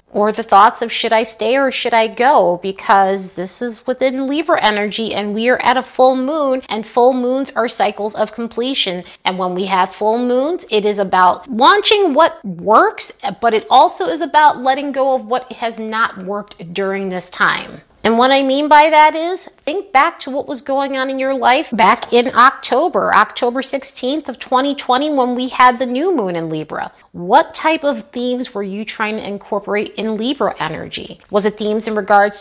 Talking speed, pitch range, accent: 200 wpm, 200-270 Hz, American